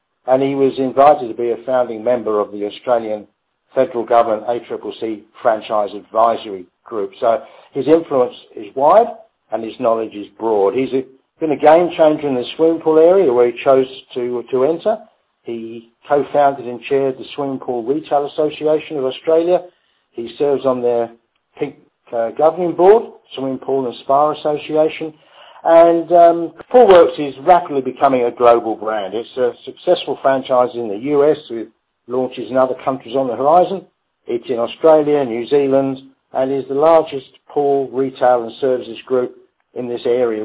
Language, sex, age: English, male, 50-69